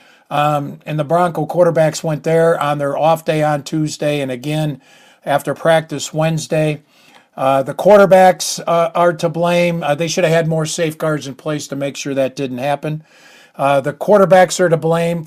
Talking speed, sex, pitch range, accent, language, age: 180 wpm, male, 150-180 Hz, American, English, 50-69